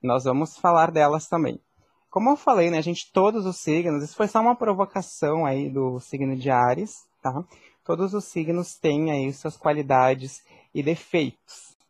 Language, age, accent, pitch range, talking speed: Portuguese, 20-39, Brazilian, 145-180 Hz, 165 wpm